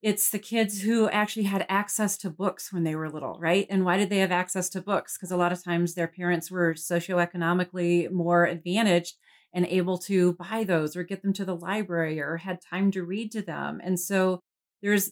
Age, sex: 40-59, female